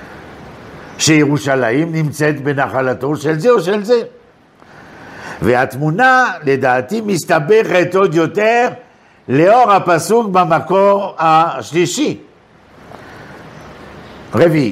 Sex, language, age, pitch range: male, Hebrew, 60-79, 130-185 Hz